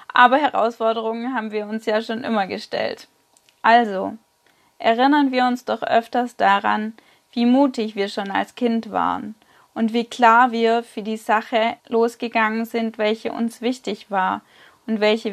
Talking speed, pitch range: 150 wpm, 220-250 Hz